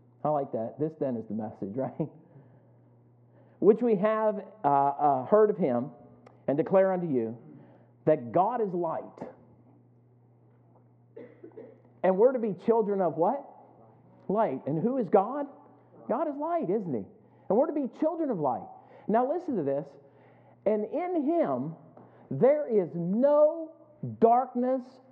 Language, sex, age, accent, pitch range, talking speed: English, male, 50-69, American, 155-260 Hz, 145 wpm